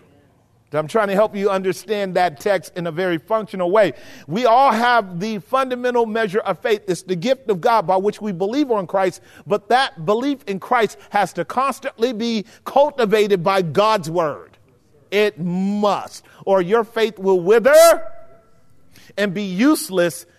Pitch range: 160-205 Hz